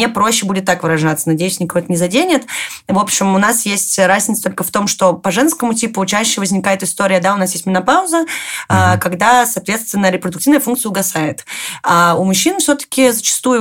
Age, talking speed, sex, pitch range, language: 20-39, 180 wpm, female, 180-235 Hz, Russian